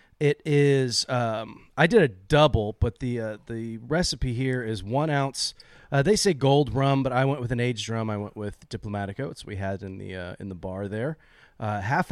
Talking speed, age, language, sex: 220 wpm, 30-49, English, male